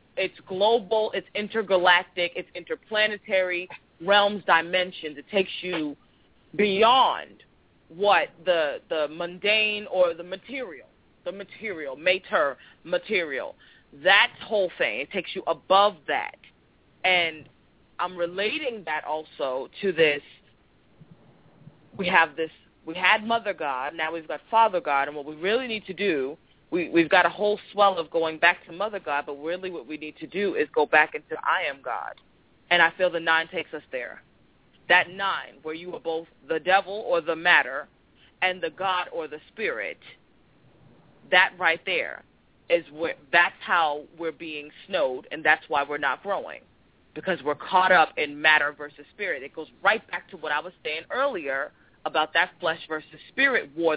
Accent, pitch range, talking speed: American, 155-205 Hz, 165 wpm